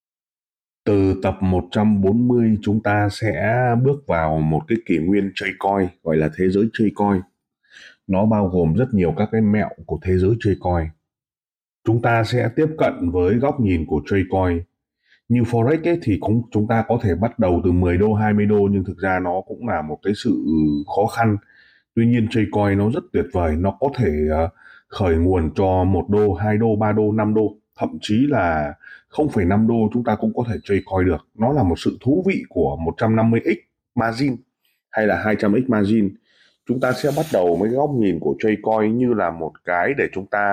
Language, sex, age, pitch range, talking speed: Vietnamese, male, 30-49, 95-115 Hz, 200 wpm